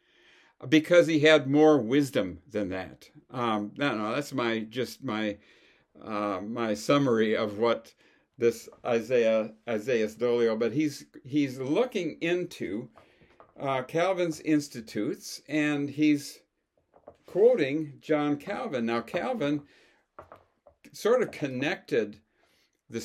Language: English